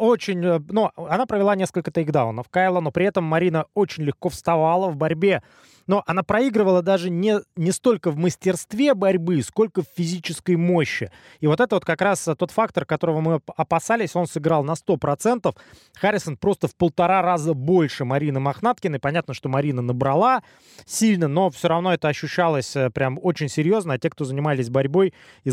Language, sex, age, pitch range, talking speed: Russian, male, 20-39, 145-190 Hz, 170 wpm